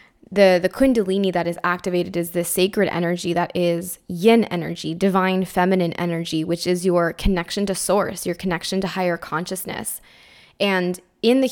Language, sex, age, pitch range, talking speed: English, female, 10-29, 175-200 Hz, 160 wpm